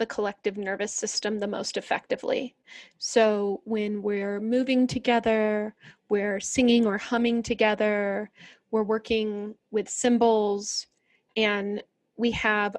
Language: English